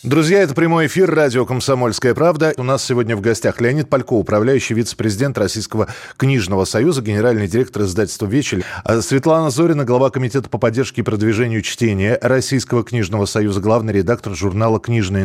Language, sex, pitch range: Russian, male, 100-125 Hz